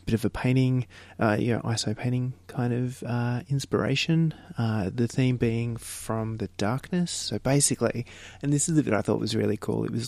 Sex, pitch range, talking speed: male, 100-125 Hz, 200 wpm